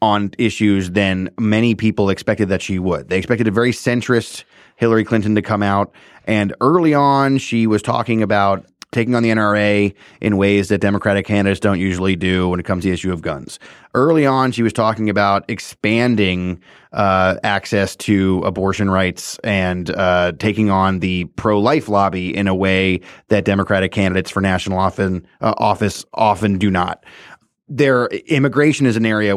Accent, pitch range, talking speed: American, 100-115 Hz, 170 wpm